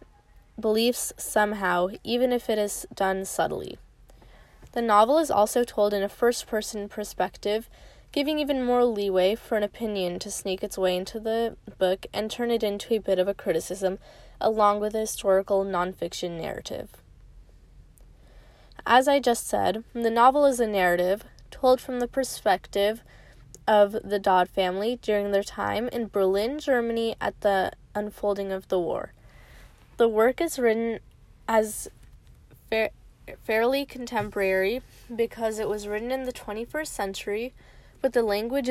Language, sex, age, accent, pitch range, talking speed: English, female, 10-29, American, 200-235 Hz, 145 wpm